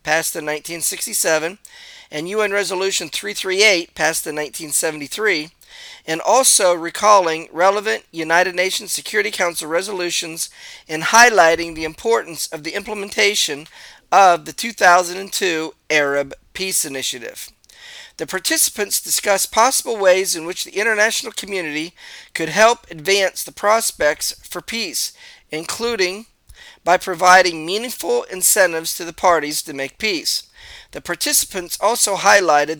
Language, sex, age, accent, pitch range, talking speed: English, male, 40-59, American, 160-210 Hz, 115 wpm